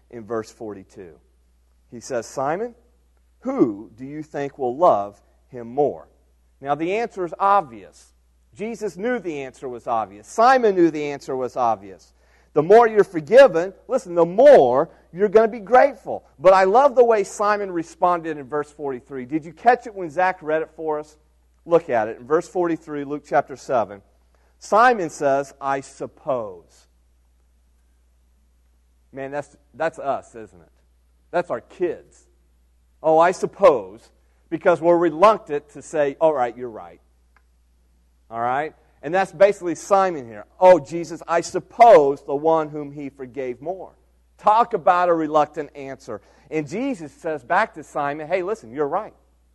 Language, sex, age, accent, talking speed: English, male, 40-59, American, 155 wpm